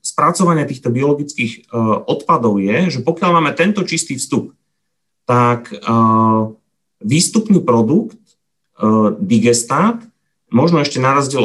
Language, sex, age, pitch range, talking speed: Slovak, male, 30-49, 125-160 Hz, 115 wpm